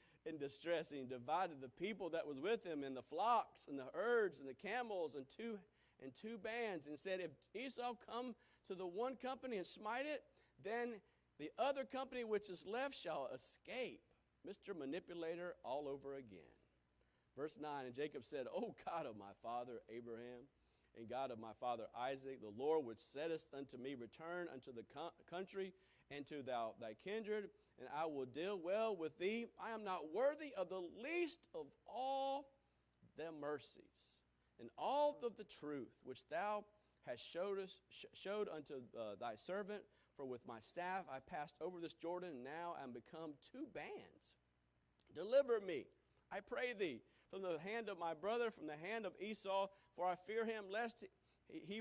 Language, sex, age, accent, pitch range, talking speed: English, male, 50-69, American, 140-225 Hz, 180 wpm